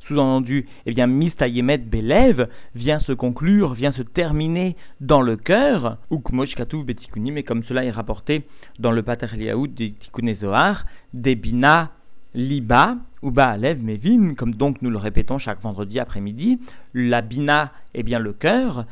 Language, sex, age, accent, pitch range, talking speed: French, male, 50-69, French, 115-150 Hz, 150 wpm